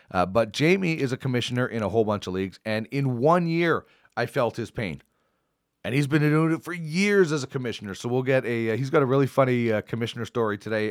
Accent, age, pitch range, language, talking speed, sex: American, 40-59, 105-135 Hz, English, 240 wpm, male